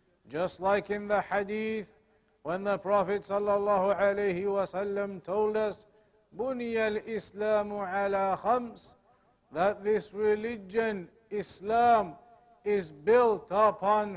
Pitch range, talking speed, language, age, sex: 200-225 Hz, 95 wpm, English, 50-69, male